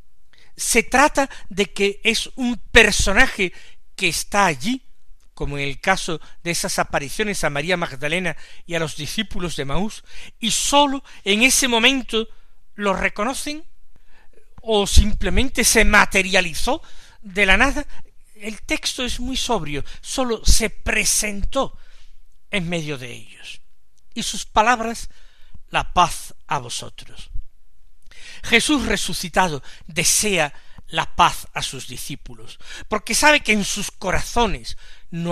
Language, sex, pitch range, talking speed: Spanish, male, 165-240 Hz, 125 wpm